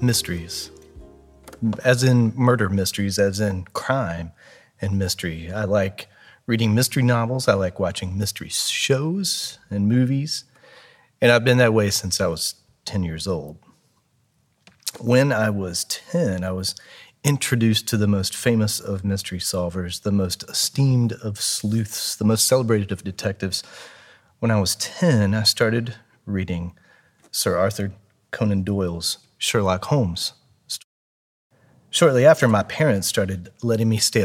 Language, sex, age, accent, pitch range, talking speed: English, male, 30-49, American, 95-125 Hz, 140 wpm